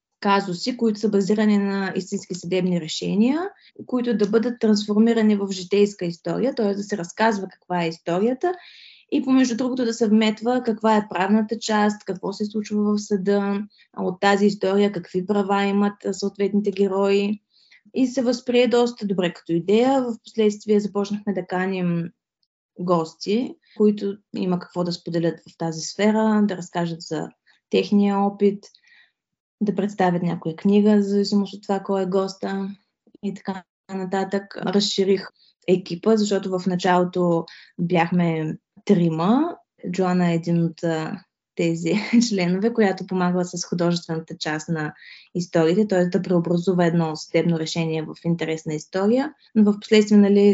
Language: Bulgarian